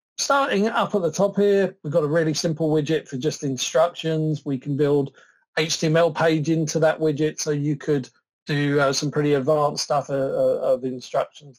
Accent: British